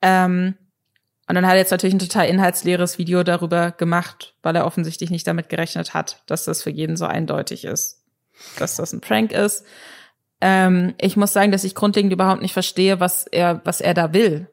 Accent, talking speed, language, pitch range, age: German, 200 wpm, German, 175-205 Hz, 20-39